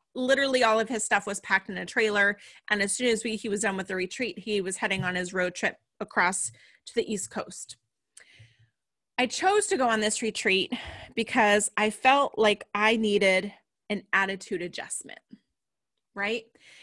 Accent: American